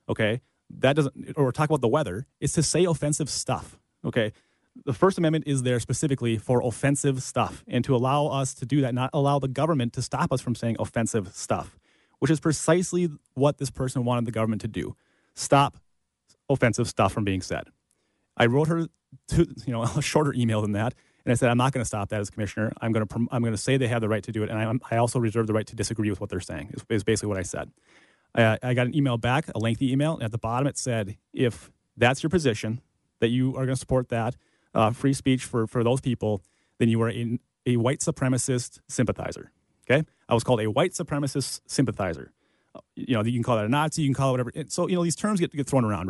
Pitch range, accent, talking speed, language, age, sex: 110-140 Hz, American, 240 wpm, English, 30-49, male